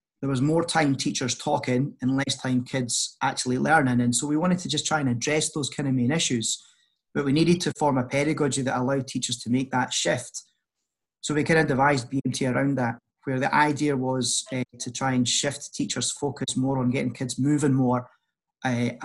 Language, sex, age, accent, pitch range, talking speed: English, male, 30-49, British, 125-145 Hz, 210 wpm